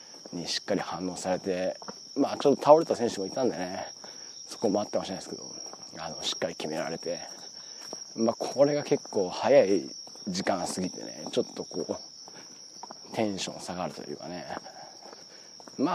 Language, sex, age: Japanese, male, 40-59